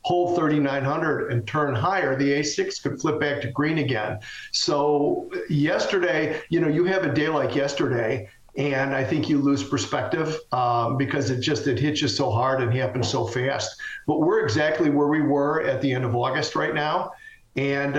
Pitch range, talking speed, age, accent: 140-170 Hz, 190 wpm, 50-69, American